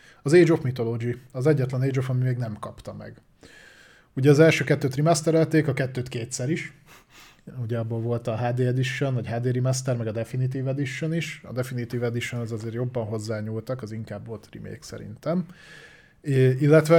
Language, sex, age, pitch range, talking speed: Hungarian, male, 20-39, 115-145 Hz, 175 wpm